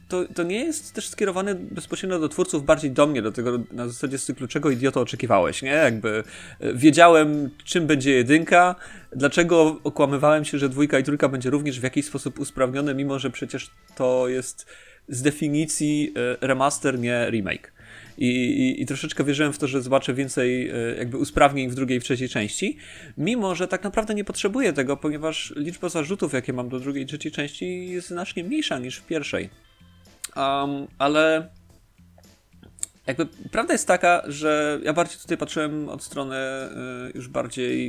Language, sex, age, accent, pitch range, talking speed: Polish, male, 30-49, native, 115-155 Hz, 165 wpm